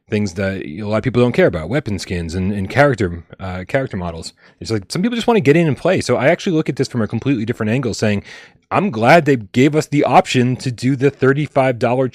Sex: male